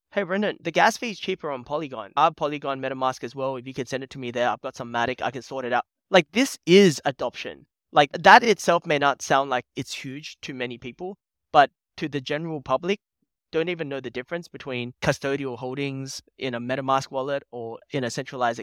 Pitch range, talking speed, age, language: 130-165 Hz, 220 wpm, 20-39, English